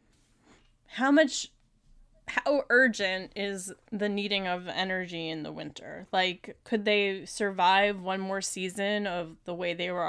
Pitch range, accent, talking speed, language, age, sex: 170-210 Hz, American, 145 wpm, English, 10-29, female